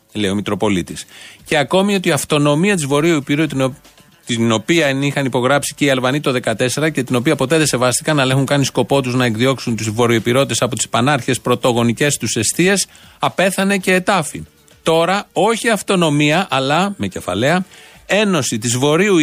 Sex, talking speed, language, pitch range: male, 175 wpm, Greek, 120-165 Hz